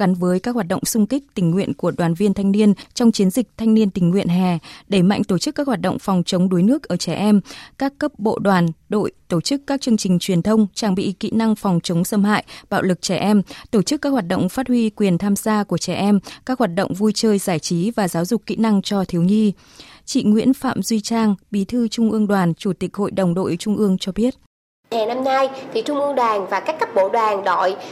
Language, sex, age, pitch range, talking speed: Vietnamese, female, 20-39, 195-285 Hz, 255 wpm